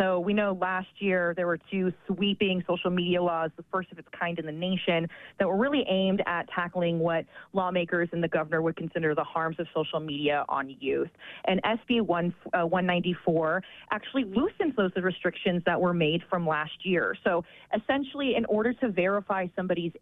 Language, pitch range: English, 165-195 Hz